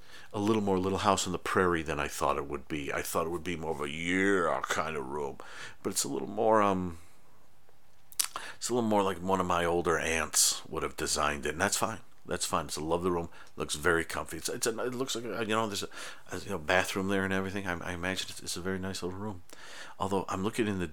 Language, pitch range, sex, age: English, 85-95 Hz, male, 50-69